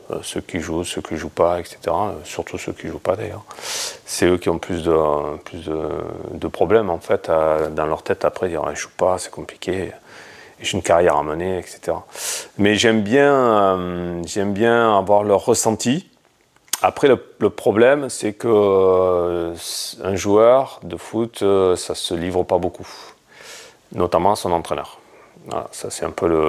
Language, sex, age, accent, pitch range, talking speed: French, male, 30-49, French, 80-100 Hz, 170 wpm